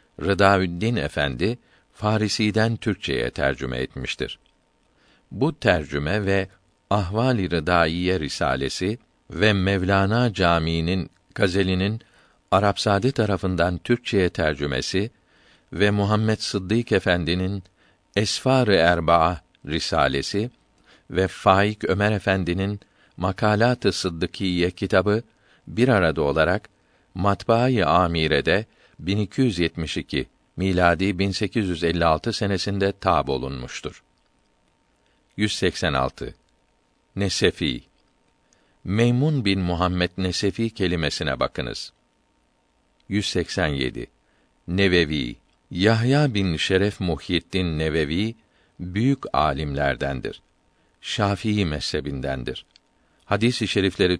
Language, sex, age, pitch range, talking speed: Turkish, male, 50-69, 85-105 Hz, 75 wpm